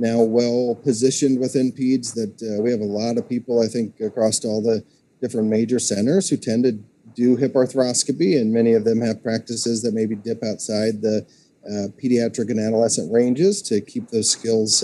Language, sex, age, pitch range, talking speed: English, male, 40-59, 110-125 Hz, 185 wpm